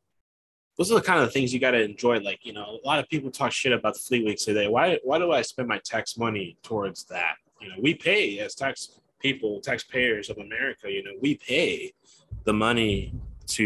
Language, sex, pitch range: English, male, 100-120 Hz